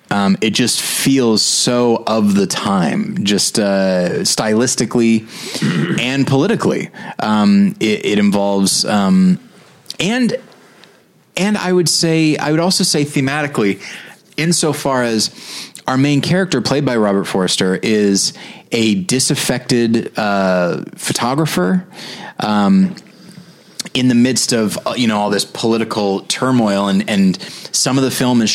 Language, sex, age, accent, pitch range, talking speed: English, male, 30-49, American, 100-160 Hz, 125 wpm